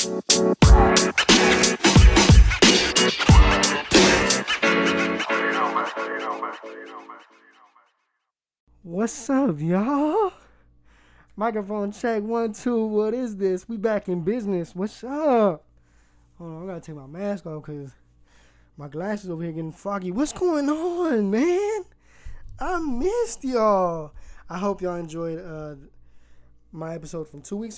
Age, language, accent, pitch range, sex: 20-39, English, American, 145-210 Hz, male